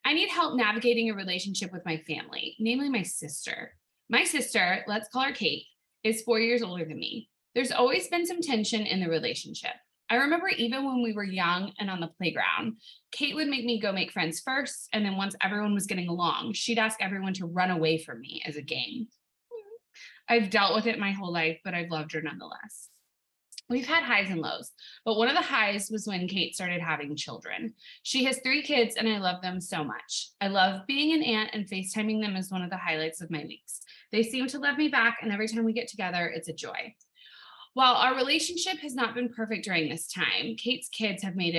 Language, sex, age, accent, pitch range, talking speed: English, female, 20-39, American, 180-245 Hz, 220 wpm